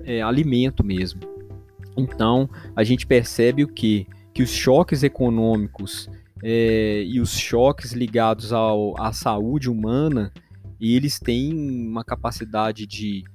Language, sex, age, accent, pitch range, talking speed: Portuguese, male, 20-39, Brazilian, 105-120 Hz, 125 wpm